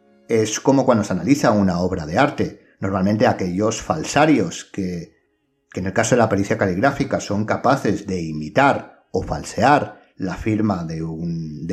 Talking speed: 155 wpm